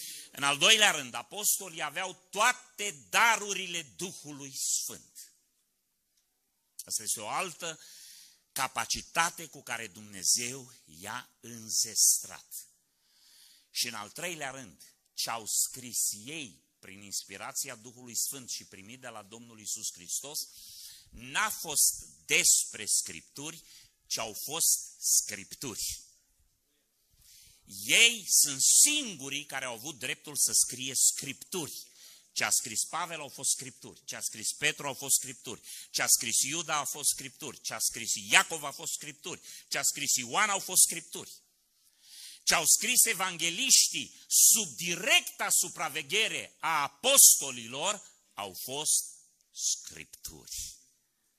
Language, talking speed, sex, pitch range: Romanian, 125 wpm, male, 120-170 Hz